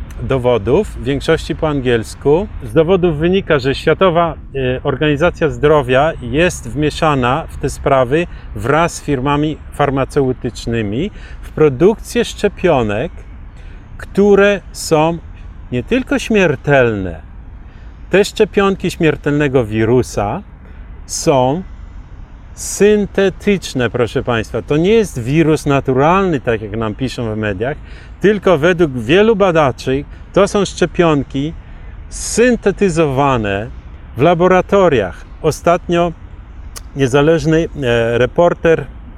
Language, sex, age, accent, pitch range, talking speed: Polish, male, 40-59, native, 120-170 Hz, 95 wpm